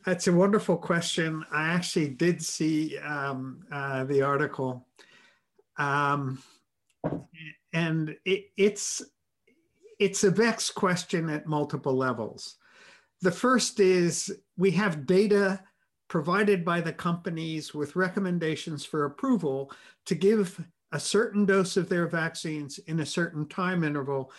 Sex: male